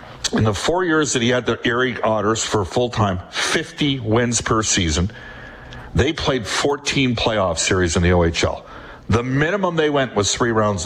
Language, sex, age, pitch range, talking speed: English, male, 50-69, 100-130 Hz, 170 wpm